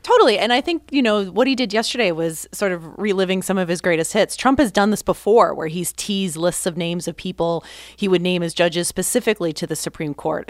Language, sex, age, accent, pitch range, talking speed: English, female, 30-49, American, 170-210 Hz, 240 wpm